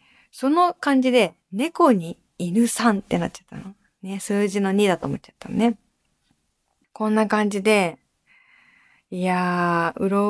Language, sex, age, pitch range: Japanese, female, 20-39, 185-275 Hz